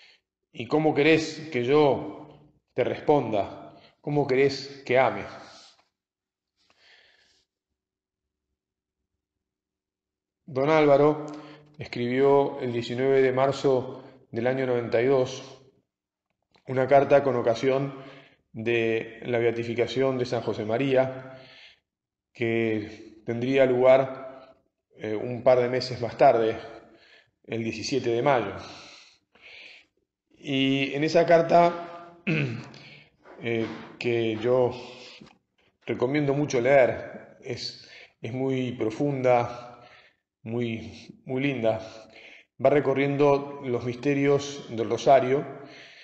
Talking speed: 90 wpm